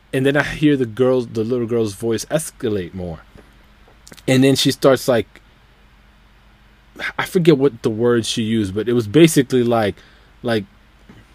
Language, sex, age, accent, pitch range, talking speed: English, male, 20-39, American, 105-140 Hz, 160 wpm